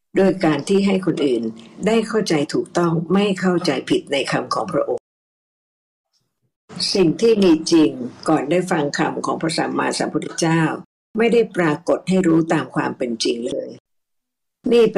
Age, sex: 60-79, female